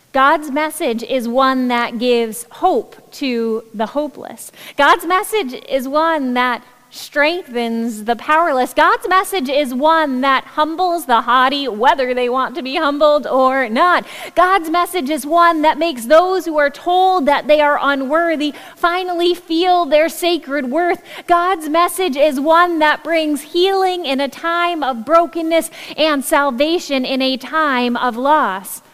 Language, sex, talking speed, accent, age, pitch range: English, female, 150 wpm, American, 30-49, 250-330 Hz